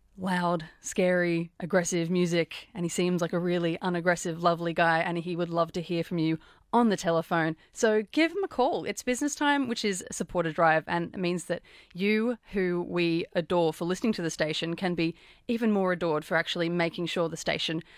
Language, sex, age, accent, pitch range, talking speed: English, female, 30-49, Australian, 170-205 Hz, 205 wpm